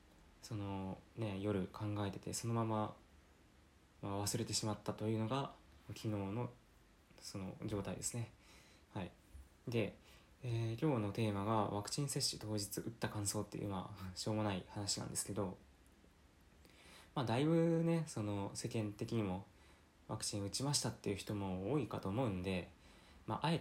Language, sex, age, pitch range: Japanese, male, 20-39, 95-115 Hz